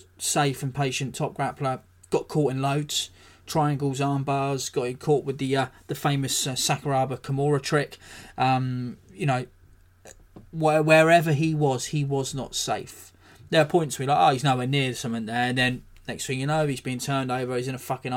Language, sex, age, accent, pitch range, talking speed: English, male, 20-39, British, 125-150 Hz, 200 wpm